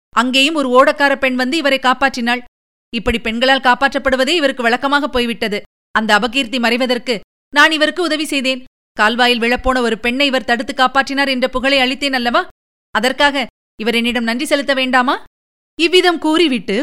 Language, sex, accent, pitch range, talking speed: Tamil, female, native, 220-290 Hz, 130 wpm